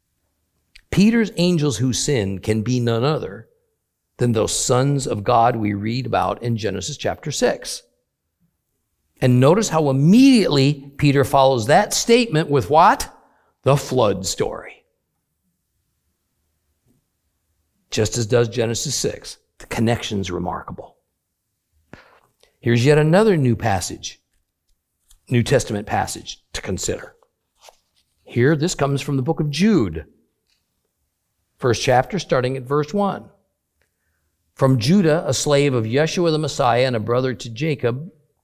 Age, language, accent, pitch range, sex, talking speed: 50-69, English, American, 110-150 Hz, male, 120 wpm